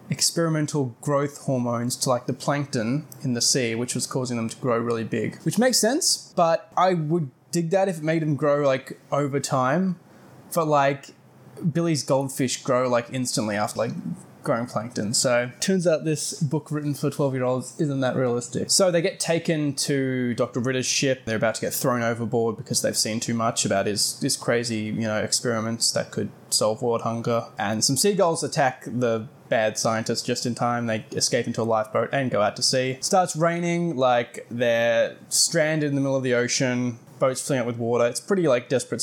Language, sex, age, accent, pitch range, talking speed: English, male, 20-39, Australian, 120-145 Hz, 200 wpm